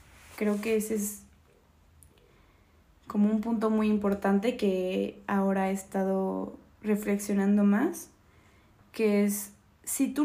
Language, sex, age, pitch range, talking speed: Spanish, female, 20-39, 190-235 Hz, 110 wpm